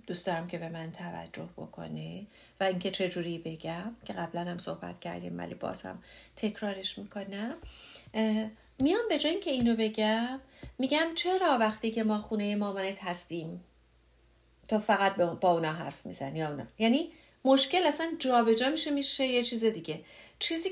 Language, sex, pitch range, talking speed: English, female, 190-270 Hz, 155 wpm